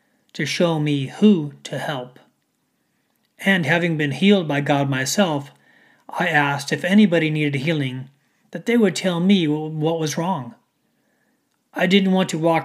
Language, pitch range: English, 145-190 Hz